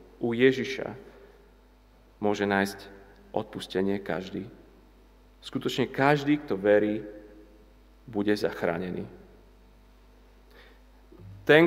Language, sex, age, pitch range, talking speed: Slovak, male, 30-49, 100-140 Hz, 65 wpm